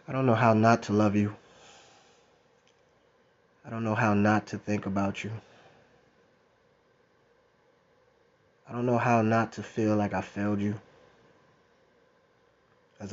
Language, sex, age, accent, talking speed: English, male, 20-39, American, 135 wpm